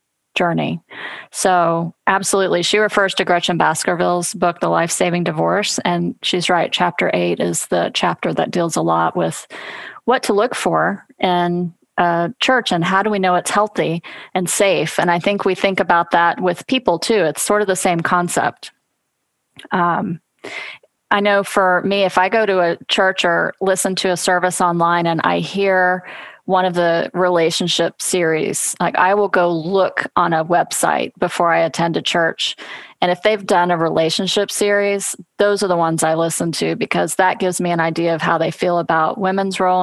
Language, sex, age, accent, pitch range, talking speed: English, female, 30-49, American, 170-190 Hz, 185 wpm